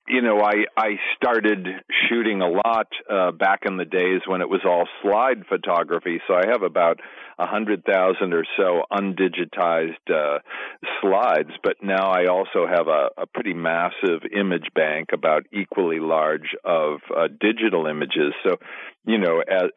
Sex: male